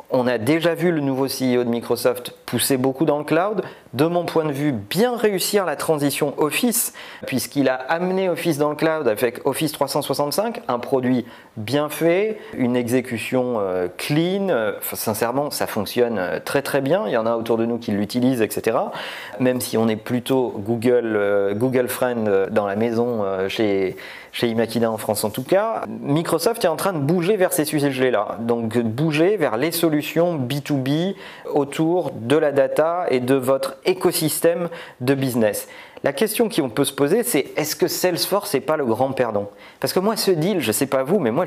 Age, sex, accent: 40-59, male, French